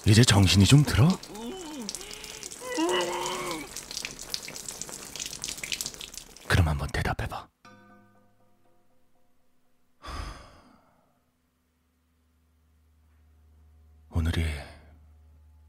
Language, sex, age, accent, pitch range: Korean, male, 40-59, native, 80-95 Hz